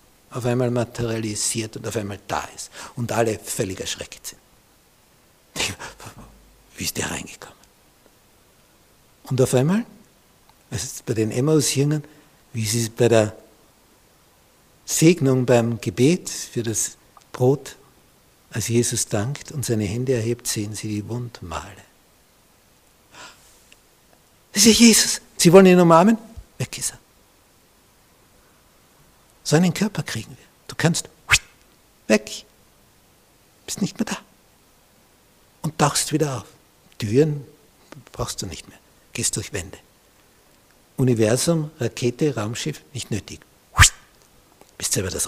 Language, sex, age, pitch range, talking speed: German, male, 60-79, 110-150 Hz, 115 wpm